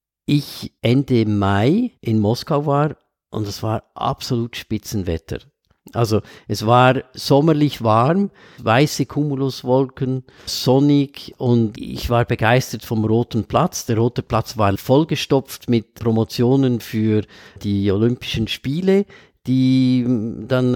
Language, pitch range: German, 110-135 Hz